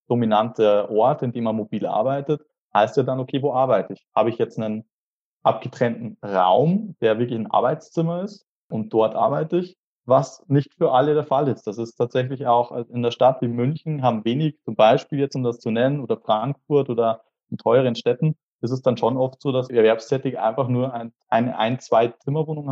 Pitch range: 120-150 Hz